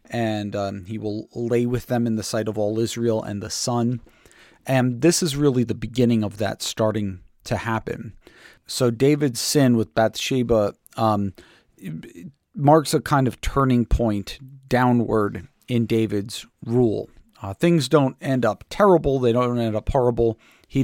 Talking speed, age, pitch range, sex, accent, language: 160 wpm, 40-59, 110-135 Hz, male, American, English